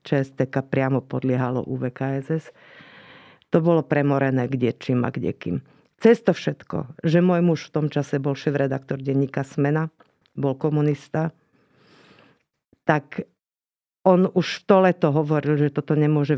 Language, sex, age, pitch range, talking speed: Slovak, female, 50-69, 140-170 Hz, 125 wpm